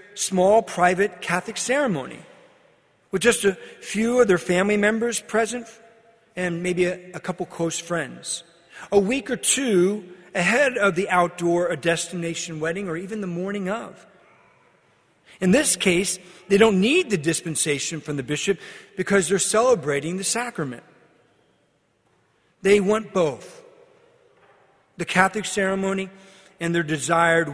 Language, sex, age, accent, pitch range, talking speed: English, male, 40-59, American, 165-210 Hz, 130 wpm